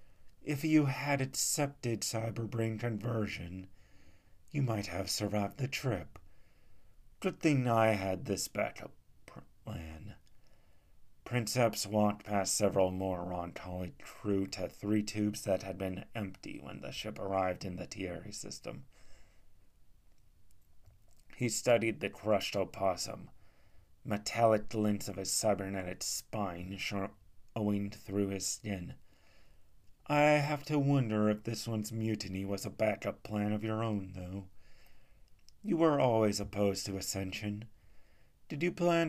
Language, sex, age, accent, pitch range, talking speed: English, male, 30-49, American, 95-115 Hz, 125 wpm